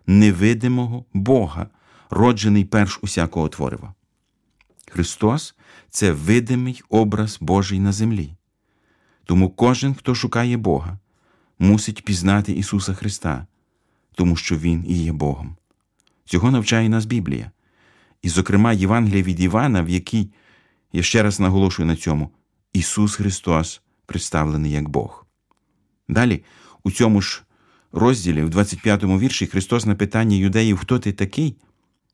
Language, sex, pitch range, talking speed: Ukrainian, male, 85-110 Hz, 125 wpm